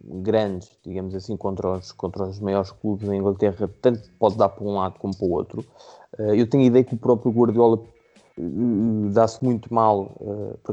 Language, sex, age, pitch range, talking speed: Portuguese, male, 20-39, 100-120 Hz, 180 wpm